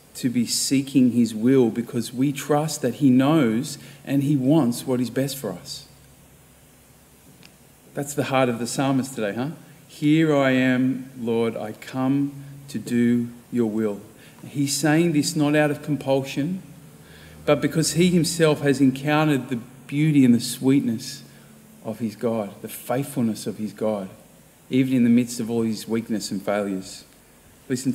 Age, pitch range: 40-59, 110-140 Hz